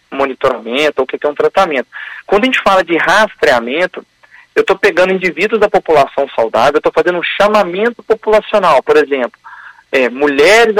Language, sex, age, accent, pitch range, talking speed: Portuguese, male, 40-59, Brazilian, 160-210 Hz, 160 wpm